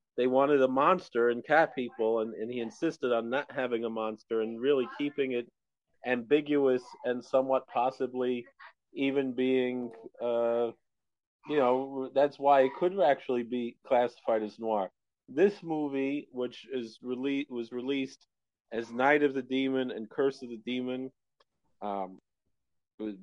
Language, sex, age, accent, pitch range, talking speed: English, male, 40-59, American, 110-140 Hz, 145 wpm